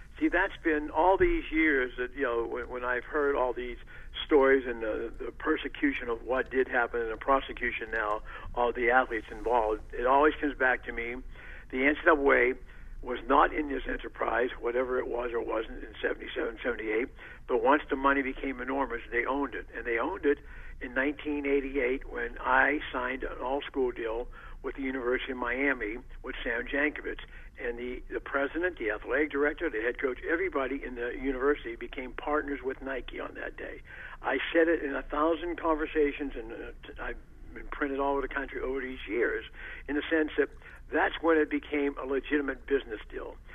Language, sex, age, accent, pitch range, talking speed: English, male, 60-79, American, 130-160 Hz, 185 wpm